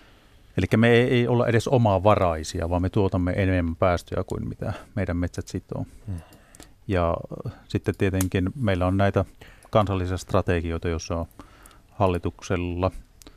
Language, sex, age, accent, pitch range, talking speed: Finnish, male, 30-49, native, 90-105 Hz, 125 wpm